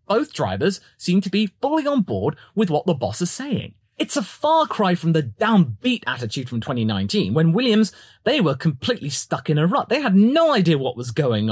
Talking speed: 210 wpm